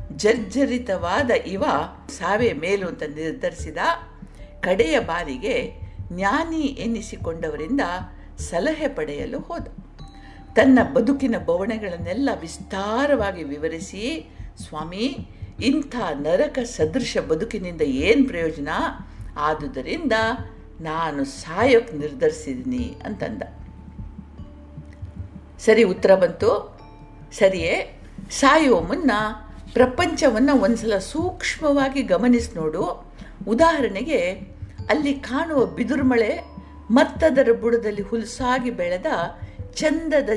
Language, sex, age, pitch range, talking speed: Kannada, female, 50-69, 180-275 Hz, 75 wpm